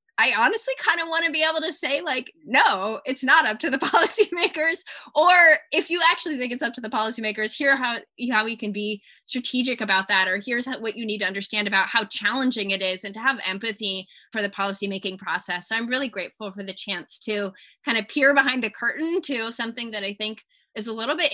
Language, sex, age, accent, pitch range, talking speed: English, female, 10-29, American, 200-260 Hz, 225 wpm